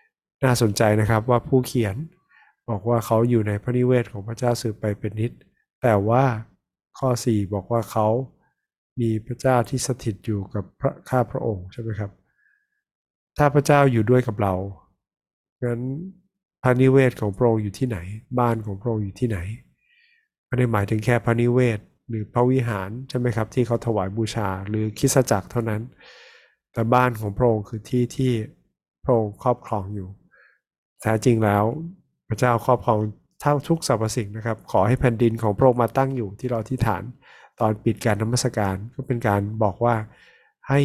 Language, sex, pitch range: Thai, male, 105-125 Hz